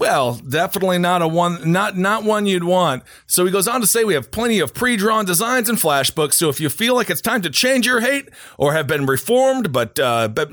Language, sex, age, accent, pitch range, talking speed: English, male, 40-59, American, 155-215 Hz, 240 wpm